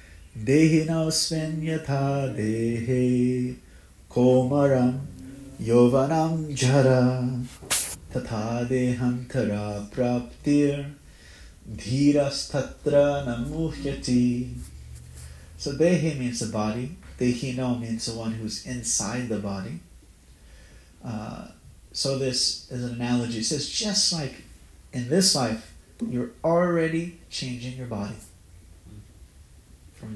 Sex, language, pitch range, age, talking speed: male, English, 95-140 Hz, 30-49, 90 wpm